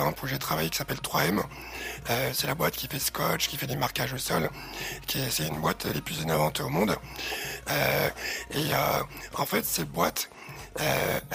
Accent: French